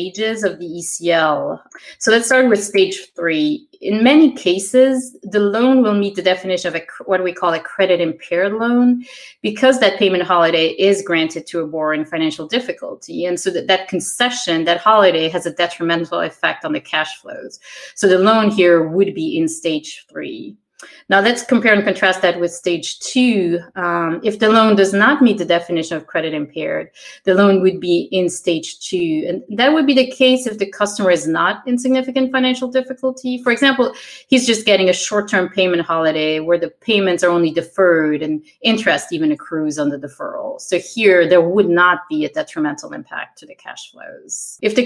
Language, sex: English, female